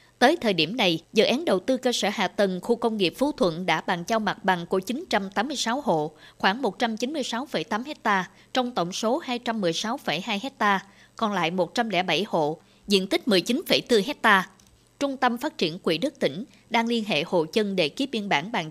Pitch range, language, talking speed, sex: 185-240 Hz, Vietnamese, 185 wpm, female